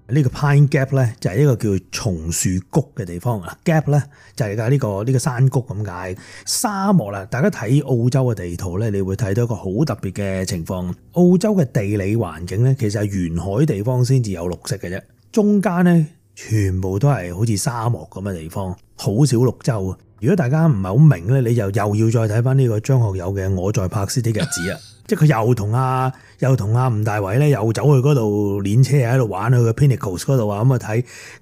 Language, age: Chinese, 30-49